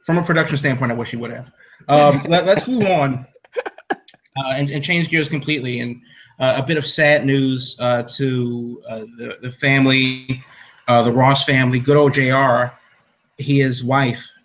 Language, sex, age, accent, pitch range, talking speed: English, male, 30-49, American, 120-140 Hz, 175 wpm